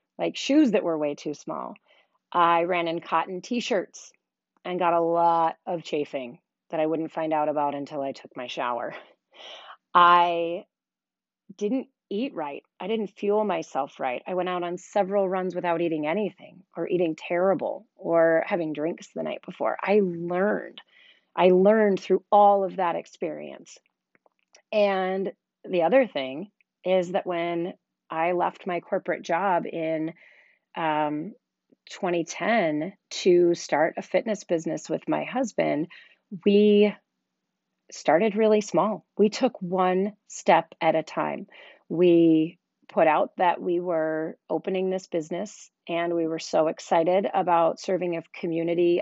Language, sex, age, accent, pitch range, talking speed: English, female, 30-49, American, 165-200 Hz, 145 wpm